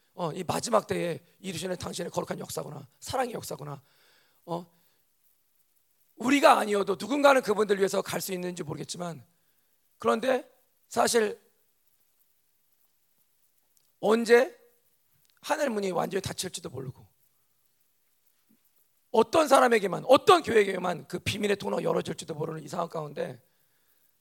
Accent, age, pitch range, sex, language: native, 40-59, 160-220 Hz, male, Korean